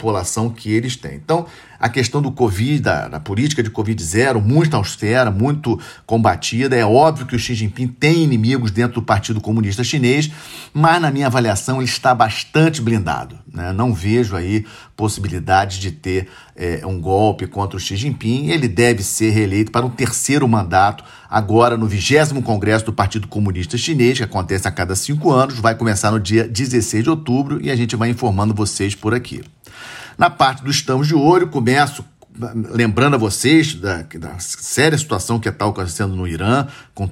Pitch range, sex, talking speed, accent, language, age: 105-130 Hz, male, 180 wpm, Brazilian, Portuguese, 40-59